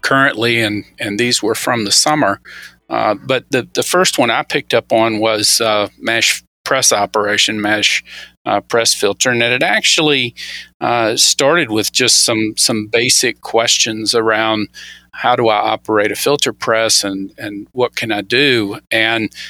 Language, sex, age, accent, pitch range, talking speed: English, male, 50-69, American, 105-125 Hz, 165 wpm